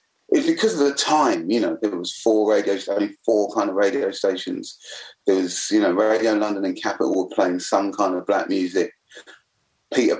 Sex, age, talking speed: male, 30-49, 195 wpm